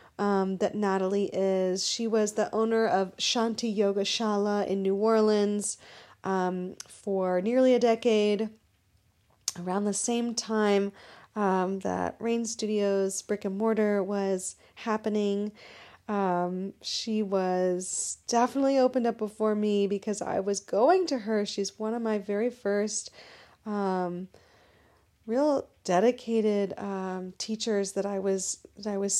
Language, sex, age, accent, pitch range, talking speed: English, female, 30-49, American, 190-220 Hz, 130 wpm